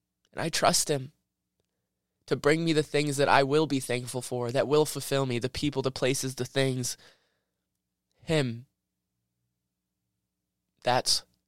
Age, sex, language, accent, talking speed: 20-39, male, English, American, 140 wpm